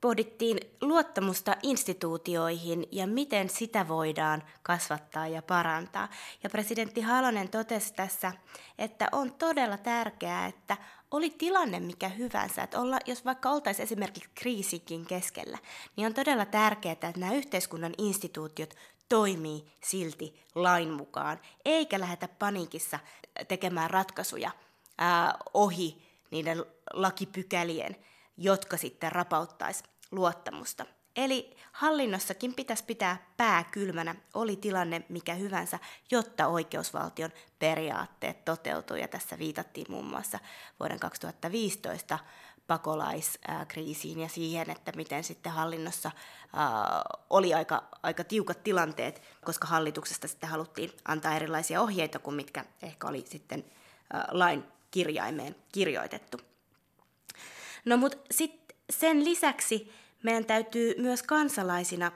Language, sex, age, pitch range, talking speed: Finnish, female, 20-39, 165-230 Hz, 110 wpm